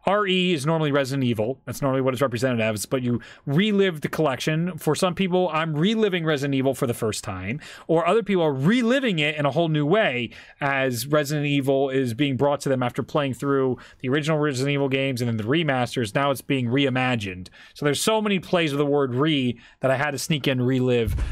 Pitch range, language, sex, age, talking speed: 125-165 Hz, English, male, 30-49, 220 wpm